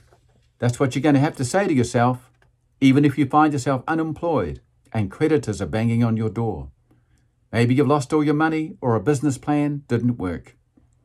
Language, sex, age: English, male, 50-69